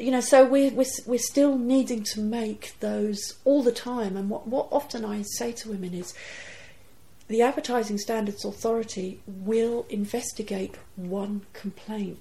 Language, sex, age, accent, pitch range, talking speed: English, female, 40-59, British, 190-245 Hz, 150 wpm